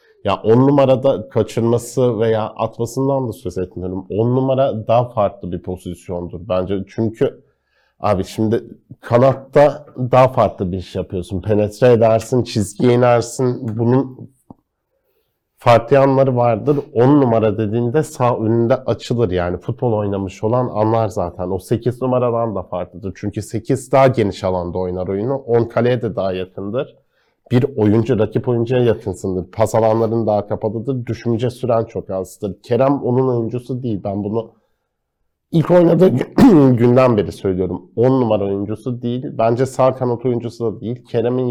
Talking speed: 140 wpm